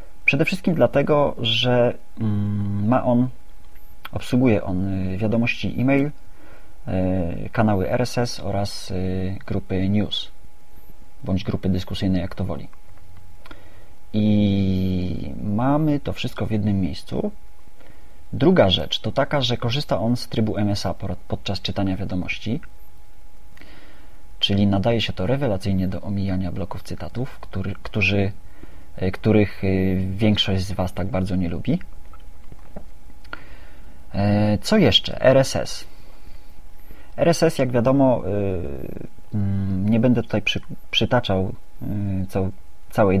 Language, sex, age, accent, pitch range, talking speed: Polish, male, 30-49, native, 95-115 Hz, 100 wpm